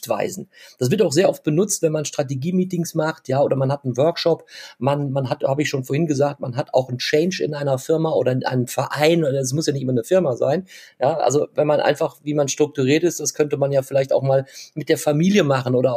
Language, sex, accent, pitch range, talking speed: German, male, German, 140-180 Hz, 250 wpm